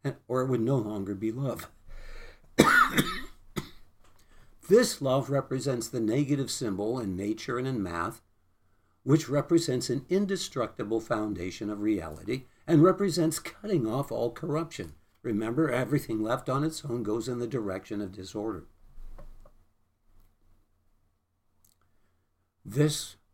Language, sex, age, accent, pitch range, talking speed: English, male, 60-79, American, 95-130 Hz, 115 wpm